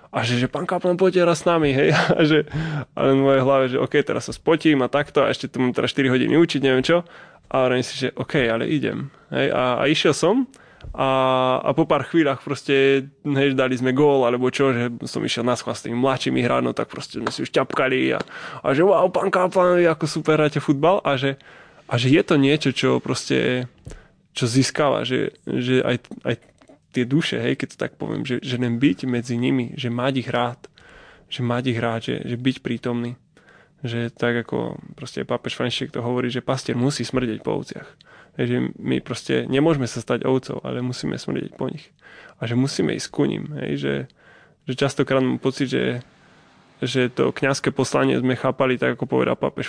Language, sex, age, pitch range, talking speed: Slovak, male, 20-39, 120-145 Hz, 200 wpm